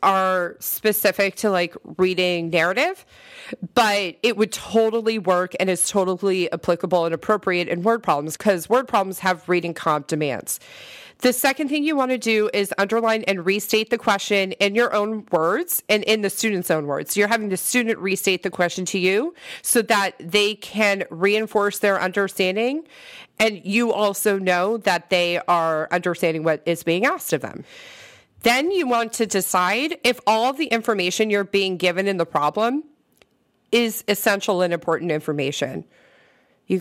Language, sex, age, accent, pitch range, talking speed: English, female, 30-49, American, 180-225 Hz, 165 wpm